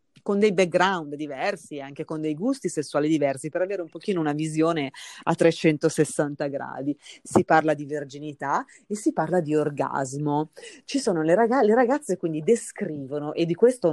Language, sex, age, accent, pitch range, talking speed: Italian, female, 40-59, native, 150-195 Hz, 170 wpm